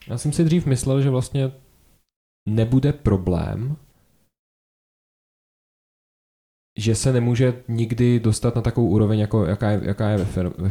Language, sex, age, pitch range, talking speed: Czech, male, 20-39, 95-110 Hz, 120 wpm